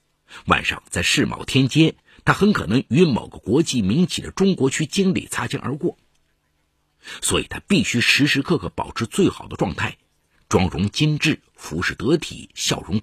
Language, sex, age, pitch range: Chinese, male, 50-69, 90-145 Hz